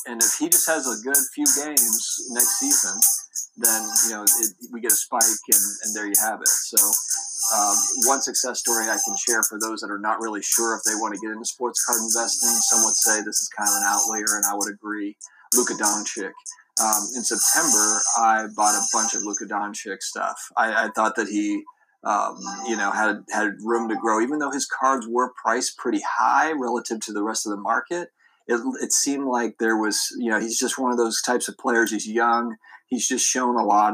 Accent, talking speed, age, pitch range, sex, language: American, 220 wpm, 40-59, 110-135 Hz, male, English